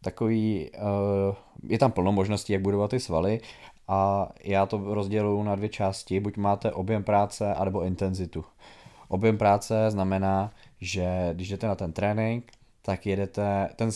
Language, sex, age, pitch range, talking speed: Czech, male, 20-39, 95-110 Hz, 145 wpm